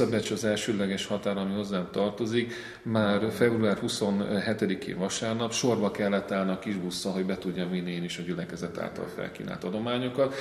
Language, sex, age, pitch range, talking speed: Hungarian, male, 40-59, 95-115 Hz, 150 wpm